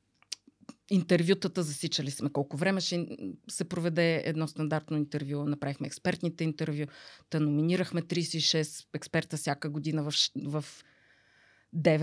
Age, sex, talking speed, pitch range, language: 20-39, female, 110 wpm, 150-170 Hz, Bulgarian